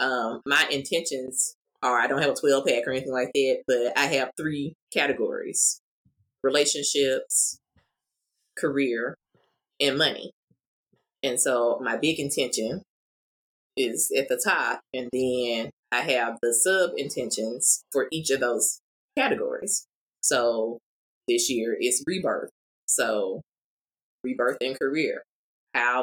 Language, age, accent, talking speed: English, 20-39, American, 125 wpm